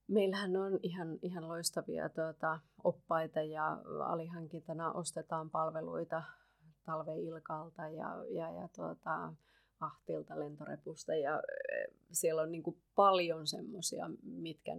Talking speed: 100 wpm